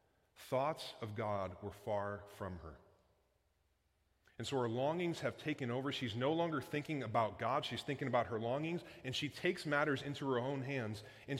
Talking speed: 180 wpm